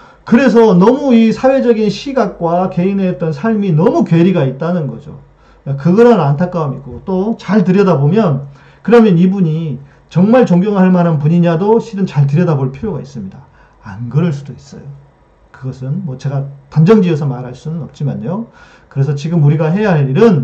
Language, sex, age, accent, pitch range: Korean, male, 40-59, native, 140-185 Hz